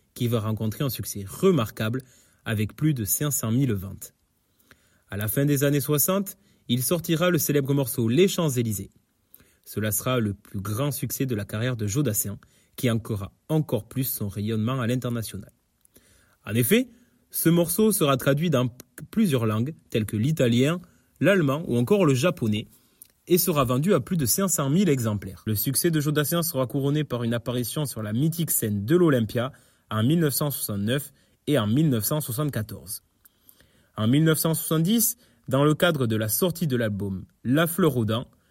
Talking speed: 165 wpm